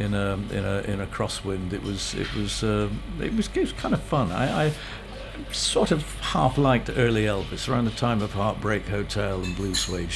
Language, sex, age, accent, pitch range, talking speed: English, male, 50-69, British, 95-115 Hz, 215 wpm